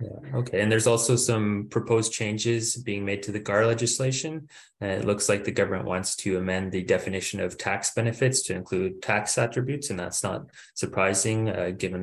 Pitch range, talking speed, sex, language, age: 95-115 Hz, 190 wpm, male, English, 20-39